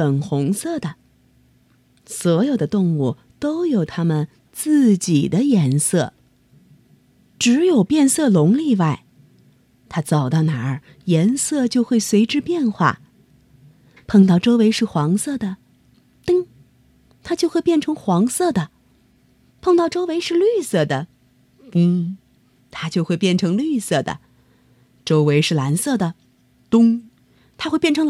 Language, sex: Chinese, female